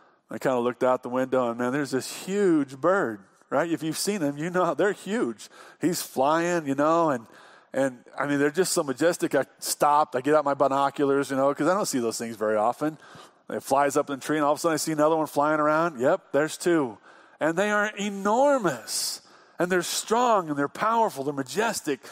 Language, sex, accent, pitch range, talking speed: English, male, American, 125-165 Hz, 225 wpm